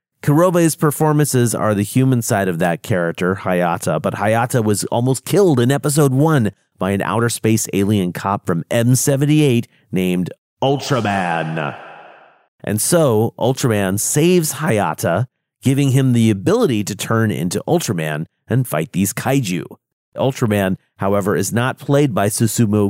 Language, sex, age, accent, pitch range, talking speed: English, male, 30-49, American, 100-135 Hz, 135 wpm